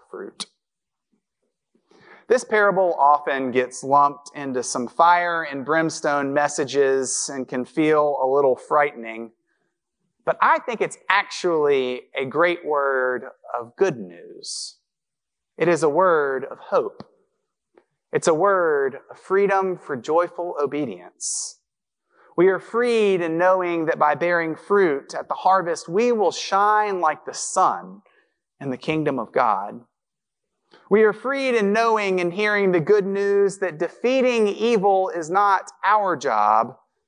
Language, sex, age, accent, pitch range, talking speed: English, male, 30-49, American, 145-210 Hz, 135 wpm